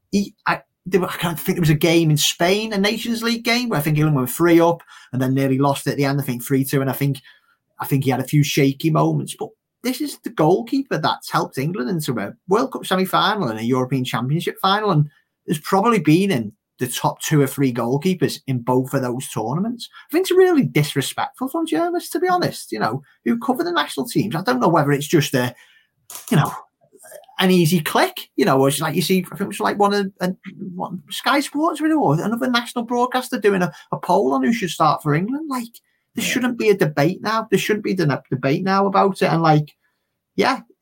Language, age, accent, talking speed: English, 30-49, British, 230 wpm